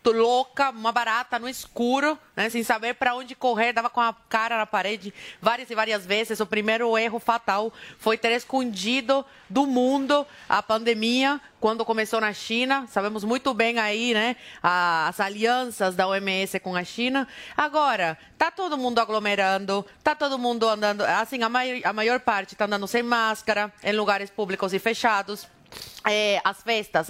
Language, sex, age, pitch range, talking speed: Portuguese, female, 30-49, 200-250 Hz, 160 wpm